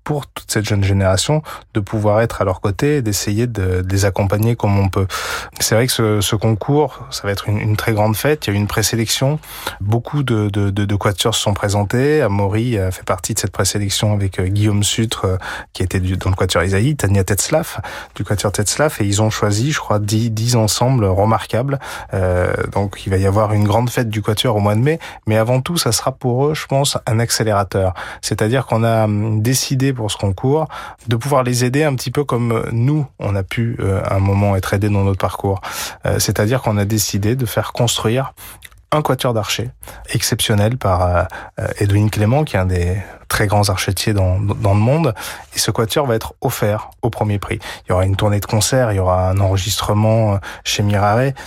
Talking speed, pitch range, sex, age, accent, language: 210 wpm, 100-125 Hz, male, 20-39, French, French